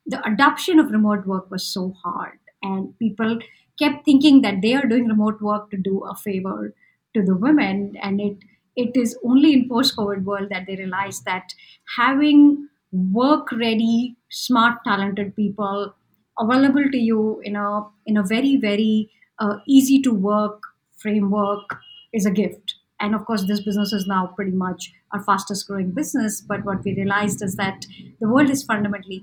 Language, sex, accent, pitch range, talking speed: English, male, Indian, 195-250 Hz, 170 wpm